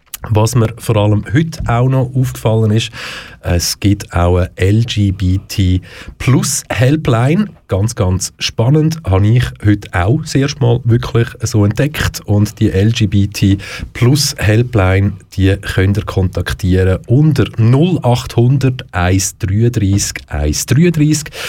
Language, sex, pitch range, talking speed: German, male, 95-125 Hz, 105 wpm